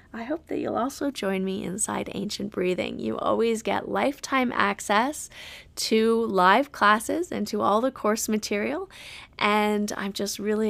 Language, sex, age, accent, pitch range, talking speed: English, female, 20-39, American, 195-245 Hz, 155 wpm